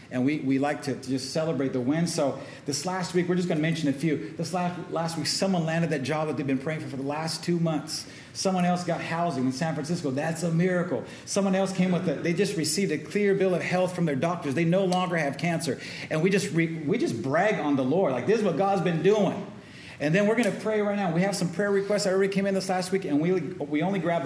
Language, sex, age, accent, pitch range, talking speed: English, male, 40-59, American, 150-195 Hz, 275 wpm